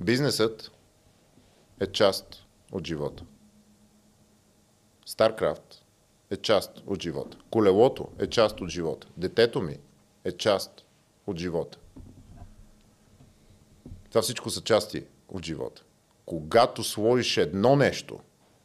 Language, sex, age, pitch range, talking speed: Bulgarian, male, 40-59, 100-125 Hz, 100 wpm